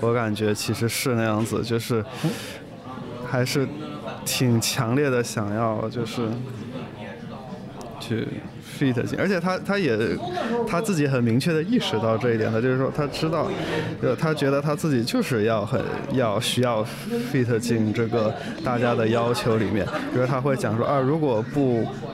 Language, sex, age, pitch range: Chinese, male, 20-39, 115-130 Hz